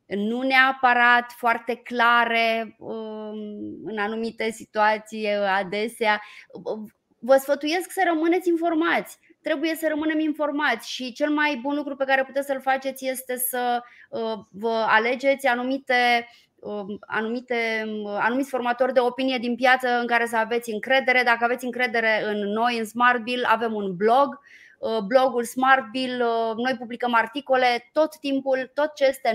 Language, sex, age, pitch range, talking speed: Romanian, female, 20-39, 220-265 Hz, 135 wpm